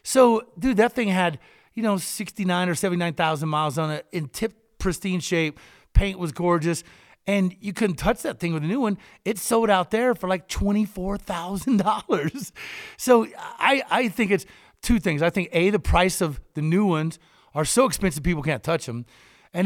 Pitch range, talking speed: 180-225 Hz, 195 wpm